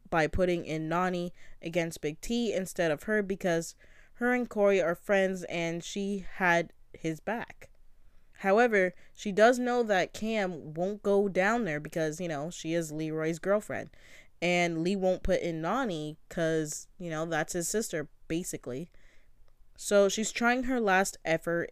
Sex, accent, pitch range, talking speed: female, American, 160-200 Hz, 155 wpm